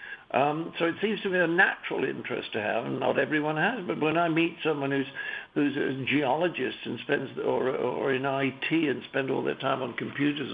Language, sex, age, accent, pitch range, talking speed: English, male, 60-79, British, 140-175 Hz, 210 wpm